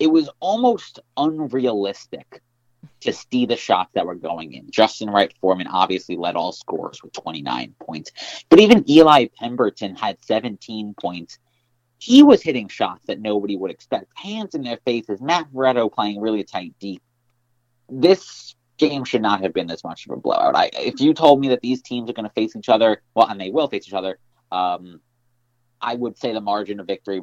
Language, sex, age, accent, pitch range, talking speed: English, male, 30-49, American, 105-145 Hz, 190 wpm